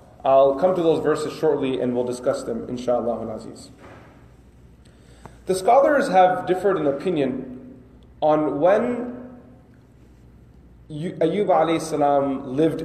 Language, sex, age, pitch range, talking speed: English, male, 30-49, 125-160 Hz, 105 wpm